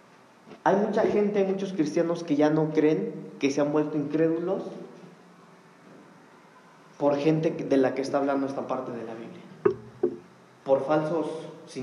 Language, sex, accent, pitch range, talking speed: Spanish, male, Mexican, 145-200 Hz, 150 wpm